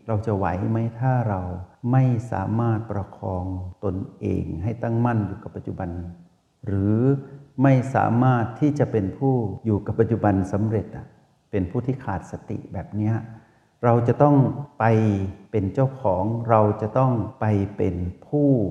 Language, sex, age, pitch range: Thai, male, 60-79, 95-115 Hz